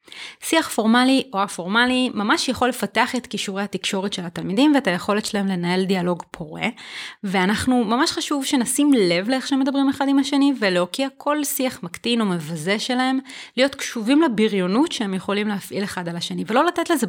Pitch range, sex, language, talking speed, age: 205-280 Hz, female, Hebrew, 170 wpm, 30-49